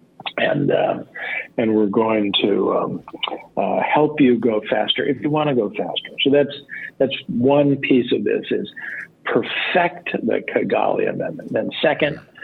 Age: 50-69